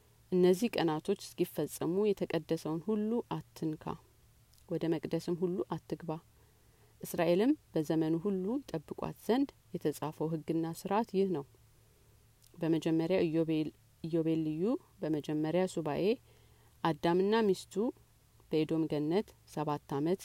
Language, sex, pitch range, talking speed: Amharic, female, 155-190 Hz, 85 wpm